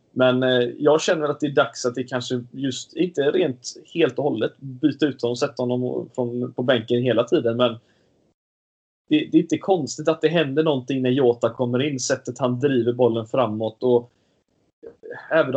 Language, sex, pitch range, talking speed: Swedish, male, 120-150 Hz, 190 wpm